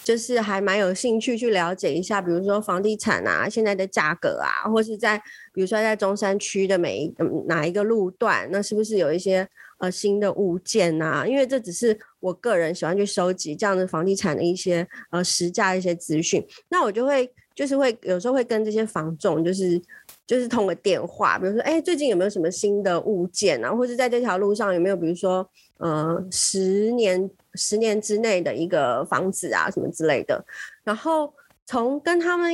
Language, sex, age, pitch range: Chinese, female, 30-49, 185-240 Hz